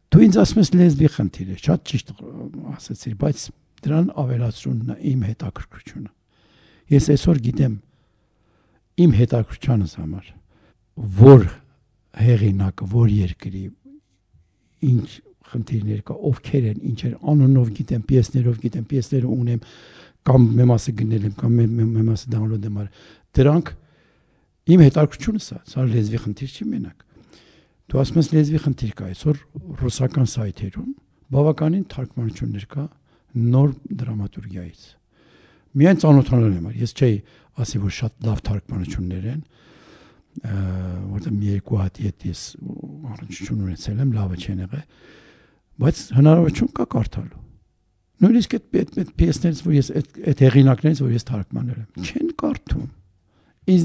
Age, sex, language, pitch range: 60-79, male, English, 105-145 Hz